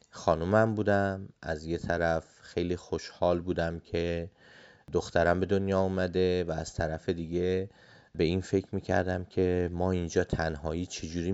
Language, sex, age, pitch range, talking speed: Persian, male, 30-49, 85-100 Hz, 140 wpm